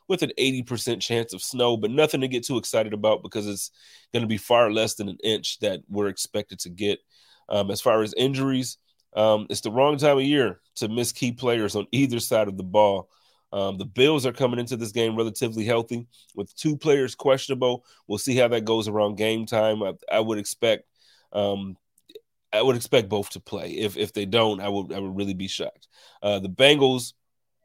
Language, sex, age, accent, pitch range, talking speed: English, male, 30-49, American, 105-125 Hz, 210 wpm